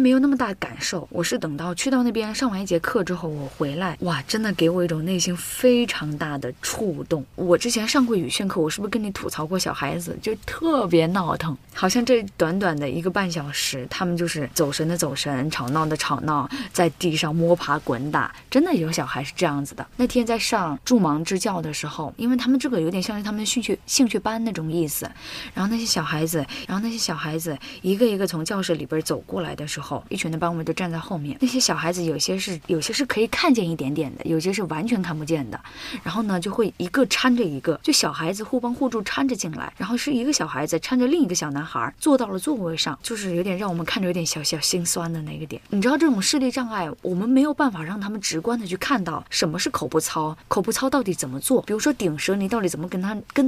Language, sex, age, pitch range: Chinese, female, 20-39, 160-235 Hz